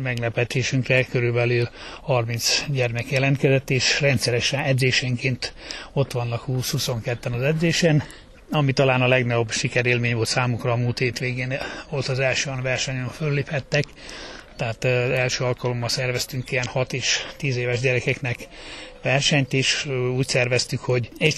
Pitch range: 125-140 Hz